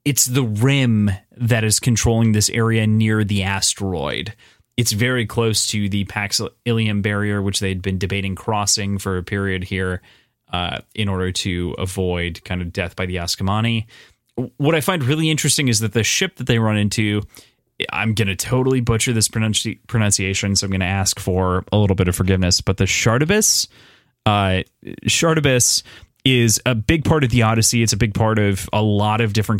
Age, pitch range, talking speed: 20-39, 100-120 Hz, 185 wpm